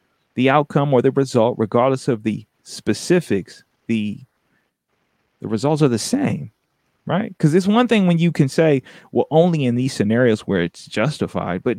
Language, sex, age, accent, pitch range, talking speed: English, male, 30-49, American, 110-150 Hz, 170 wpm